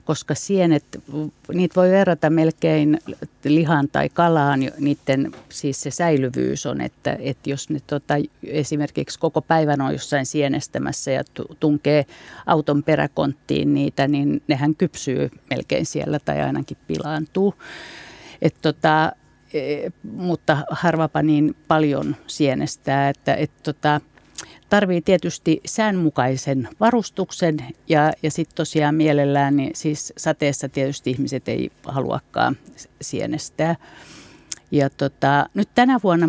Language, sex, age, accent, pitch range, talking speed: Finnish, female, 50-69, native, 140-165 Hz, 105 wpm